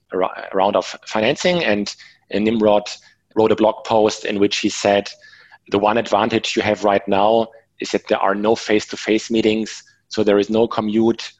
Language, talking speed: English, 175 wpm